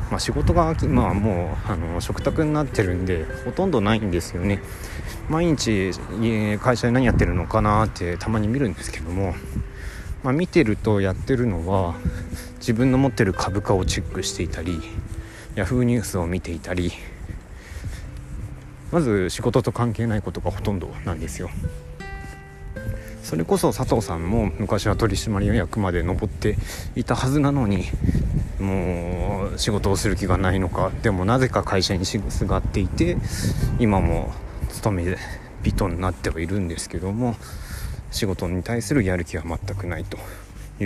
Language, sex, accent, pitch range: Japanese, male, native, 90-110 Hz